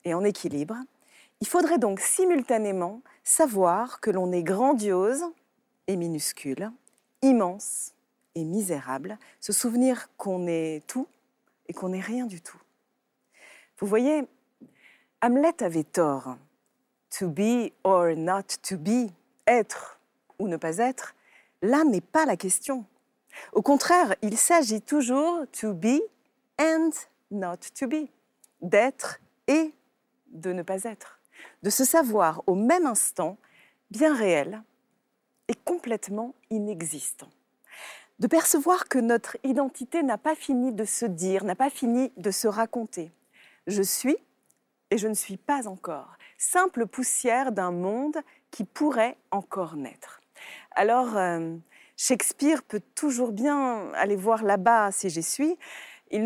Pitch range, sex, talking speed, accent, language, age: 195-275 Hz, female, 130 wpm, French, French, 40-59